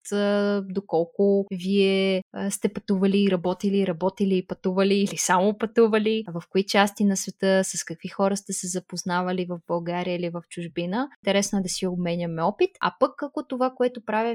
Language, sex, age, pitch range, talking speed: Bulgarian, female, 20-39, 180-220 Hz, 165 wpm